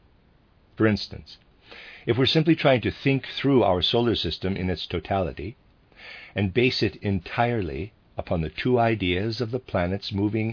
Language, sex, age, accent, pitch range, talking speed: English, male, 50-69, American, 85-120 Hz, 160 wpm